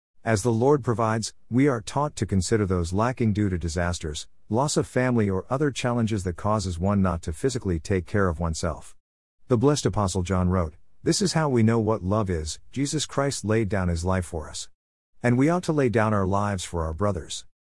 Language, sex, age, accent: English, male, 50-69, American